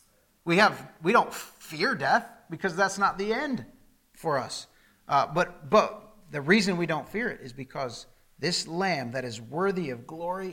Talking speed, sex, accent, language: 175 wpm, male, American, English